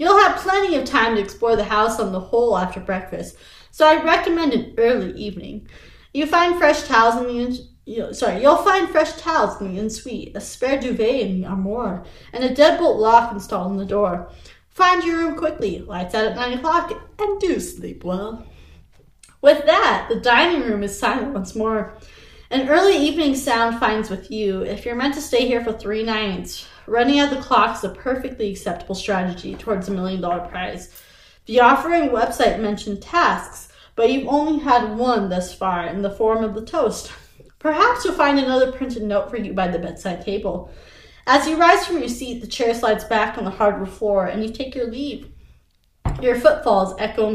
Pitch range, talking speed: 205-275 Hz, 200 wpm